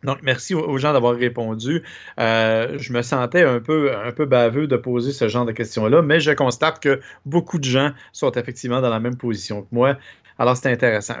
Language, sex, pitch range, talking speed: French, male, 120-150 Hz, 210 wpm